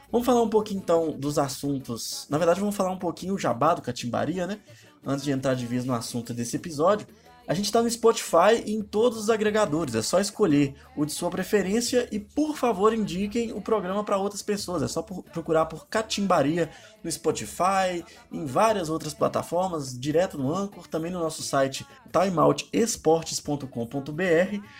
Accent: Brazilian